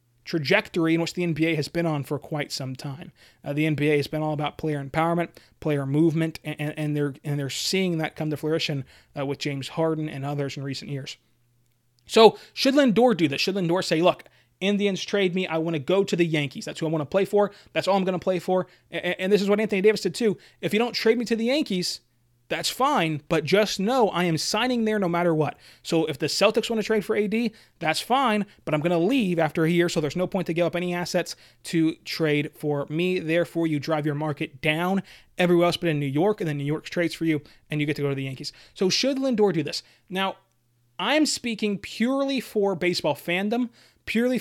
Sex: male